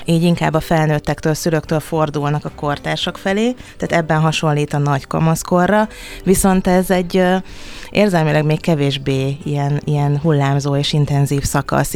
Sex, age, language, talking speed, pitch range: female, 30-49, Hungarian, 135 wpm, 145-170 Hz